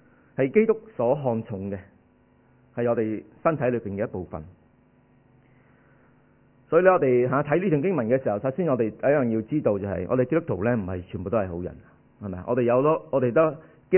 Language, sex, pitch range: Chinese, male, 110-135 Hz